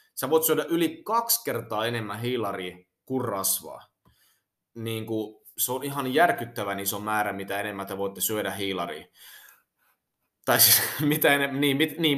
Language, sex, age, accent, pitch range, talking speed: Finnish, male, 30-49, native, 110-145 Hz, 150 wpm